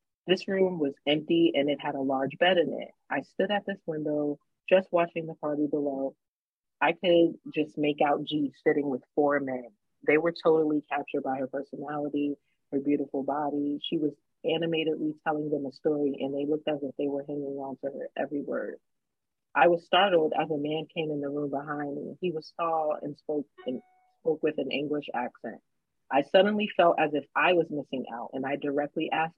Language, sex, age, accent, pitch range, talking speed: English, female, 30-49, American, 145-170 Hz, 200 wpm